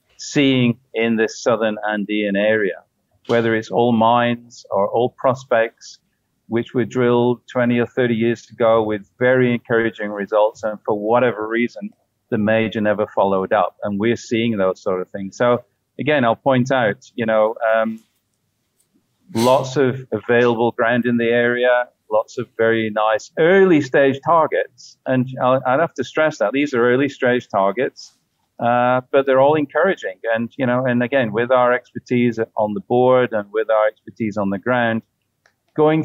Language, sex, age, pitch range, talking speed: English, male, 40-59, 110-125 Hz, 160 wpm